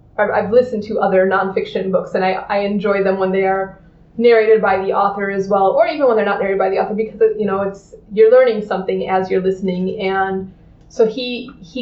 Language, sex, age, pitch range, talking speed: English, female, 20-39, 190-215 Hz, 225 wpm